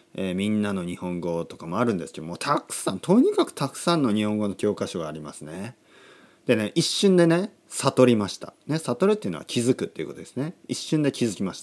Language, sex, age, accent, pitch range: Japanese, male, 40-59, native, 105-160 Hz